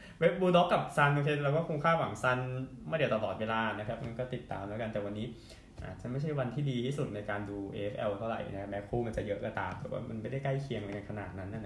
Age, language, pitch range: 20-39, Thai, 115-145 Hz